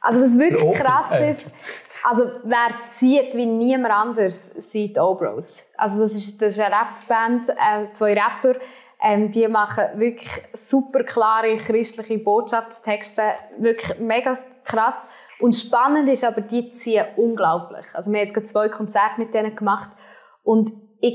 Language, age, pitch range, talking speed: German, 20-39, 195-230 Hz, 150 wpm